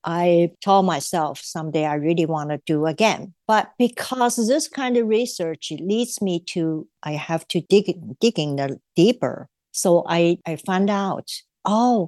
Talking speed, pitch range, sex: 160 wpm, 160-205 Hz, female